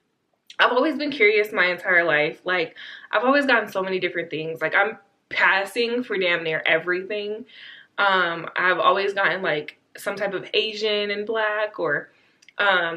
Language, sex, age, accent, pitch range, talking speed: English, female, 20-39, American, 175-230 Hz, 160 wpm